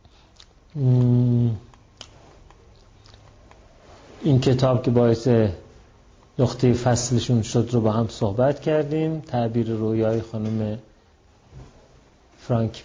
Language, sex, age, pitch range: Persian, male, 40-59, 110-130 Hz